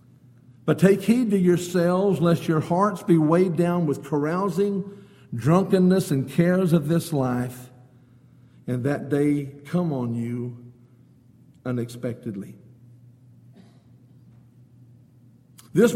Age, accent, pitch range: 50-69, American, 125-165 Hz